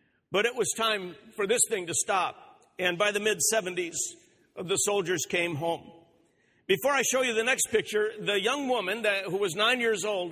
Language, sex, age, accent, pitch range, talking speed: English, male, 50-69, American, 195-245 Hz, 190 wpm